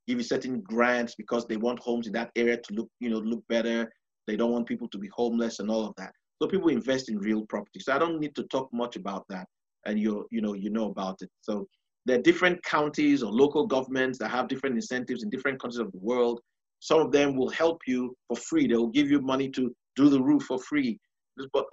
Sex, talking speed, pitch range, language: male, 245 wpm, 120-180 Hz, English